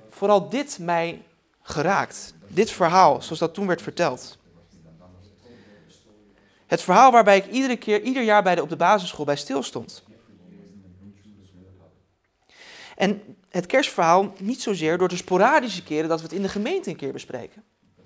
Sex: male